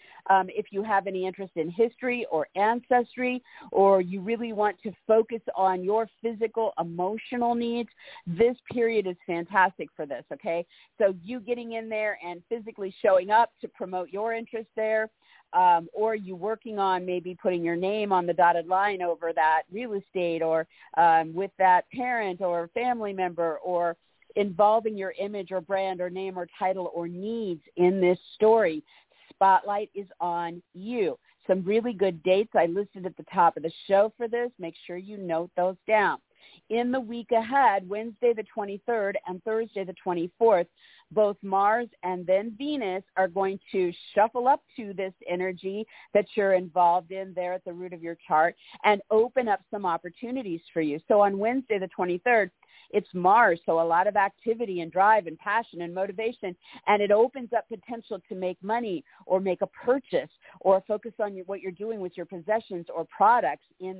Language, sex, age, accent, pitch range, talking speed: English, female, 50-69, American, 180-225 Hz, 180 wpm